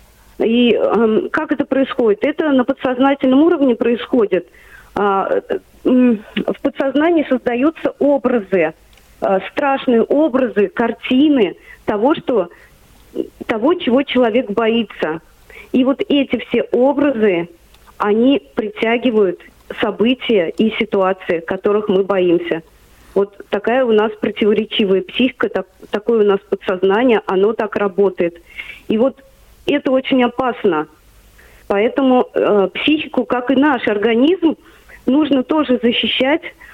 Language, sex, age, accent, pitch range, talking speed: Russian, female, 40-59, native, 205-270 Hz, 110 wpm